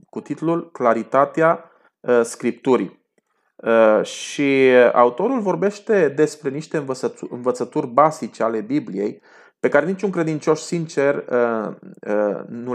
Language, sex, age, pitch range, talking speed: Romanian, male, 30-49, 120-165 Hz, 90 wpm